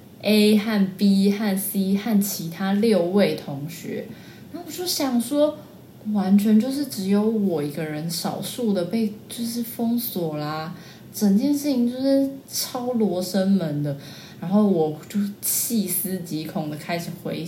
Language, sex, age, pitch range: Chinese, female, 20-39, 165-220 Hz